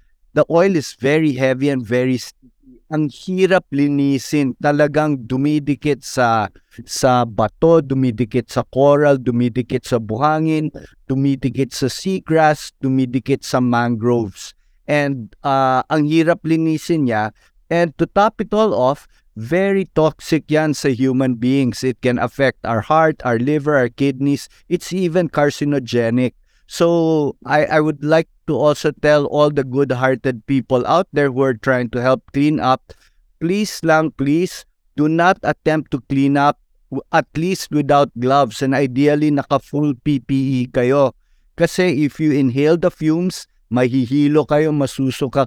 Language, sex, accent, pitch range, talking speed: English, male, Filipino, 125-150 Hz, 140 wpm